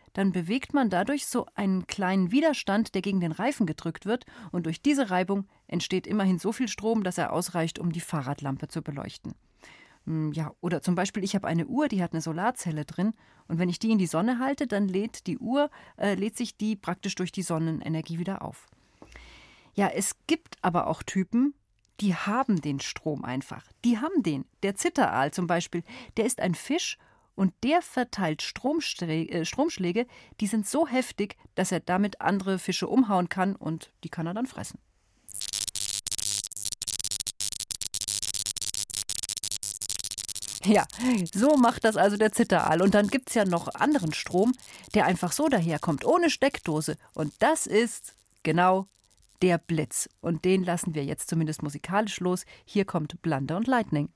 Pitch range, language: 155-220 Hz, German